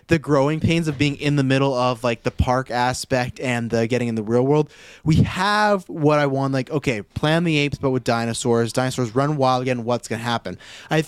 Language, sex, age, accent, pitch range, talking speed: English, male, 20-39, American, 120-160 Hz, 225 wpm